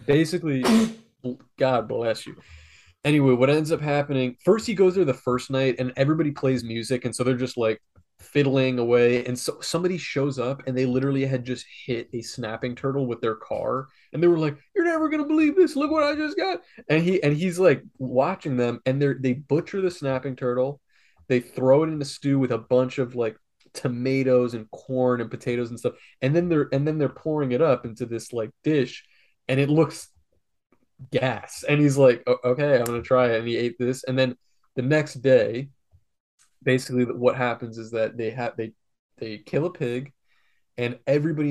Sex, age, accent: male, 20-39, American